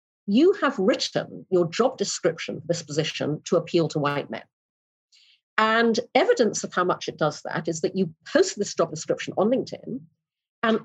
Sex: female